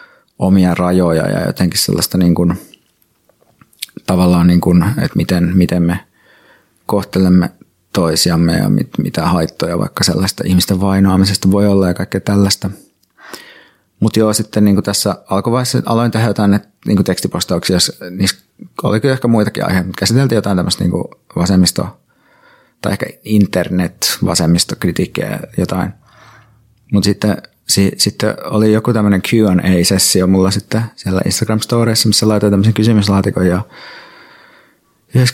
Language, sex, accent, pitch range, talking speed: Finnish, male, native, 90-110 Hz, 125 wpm